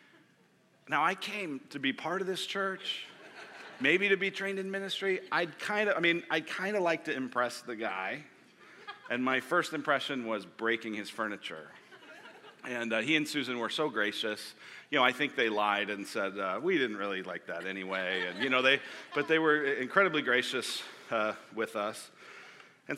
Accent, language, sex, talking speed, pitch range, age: American, English, male, 185 wpm, 110-160 Hz, 40-59